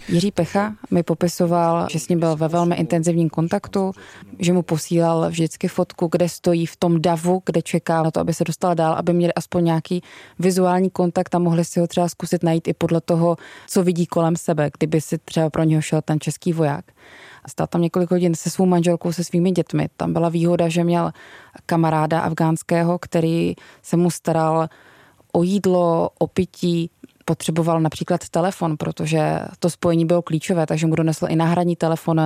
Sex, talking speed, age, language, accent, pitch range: female, 185 wpm, 20-39, Czech, native, 165-180 Hz